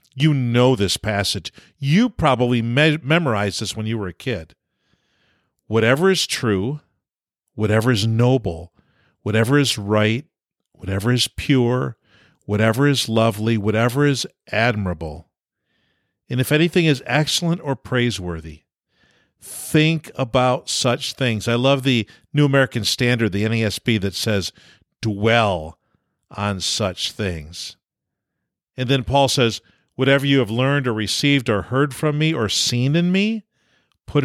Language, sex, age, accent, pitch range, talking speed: English, male, 50-69, American, 110-150 Hz, 130 wpm